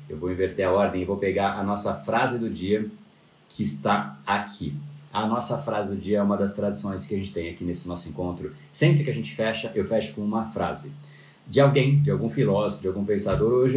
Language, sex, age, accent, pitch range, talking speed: Portuguese, male, 30-49, Brazilian, 90-140 Hz, 225 wpm